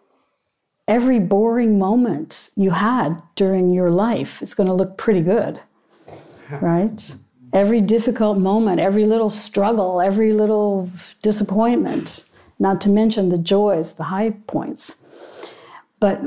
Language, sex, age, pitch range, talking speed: English, female, 50-69, 180-220 Hz, 120 wpm